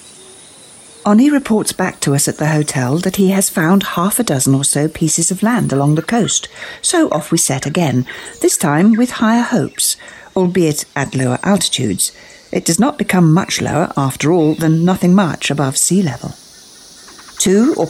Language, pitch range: English, 135-190 Hz